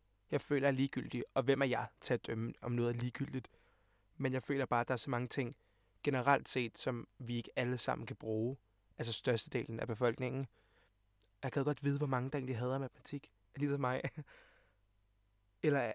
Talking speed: 200 wpm